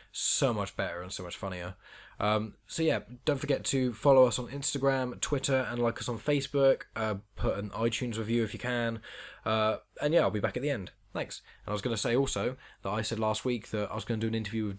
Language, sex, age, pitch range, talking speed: English, male, 10-29, 95-115 Hz, 250 wpm